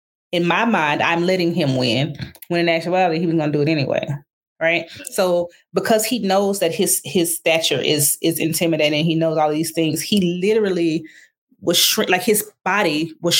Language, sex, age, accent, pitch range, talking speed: English, female, 20-39, American, 155-200 Hz, 195 wpm